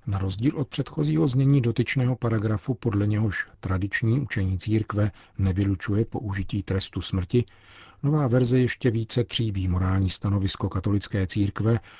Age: 50-69